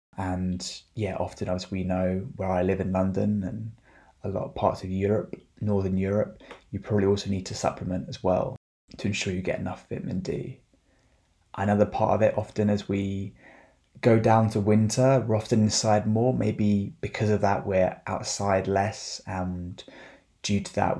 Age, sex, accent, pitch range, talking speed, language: 20-39, male, British, 95-110 Hz, 175 wpm, English